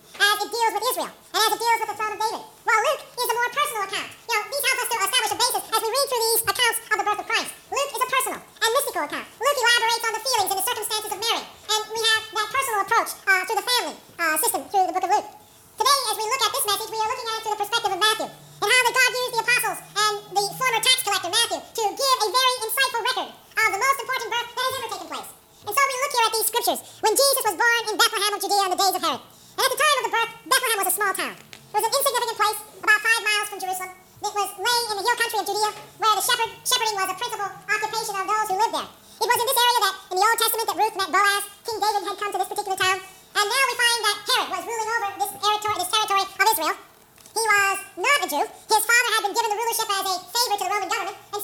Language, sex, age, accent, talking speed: English, male, 40-59, American, 280 wpm